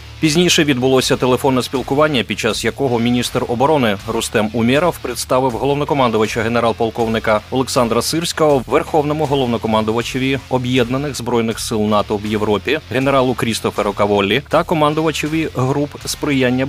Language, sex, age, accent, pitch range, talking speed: Ukrainian, male, 30-49, native, 110-135 Hz, 110 wpm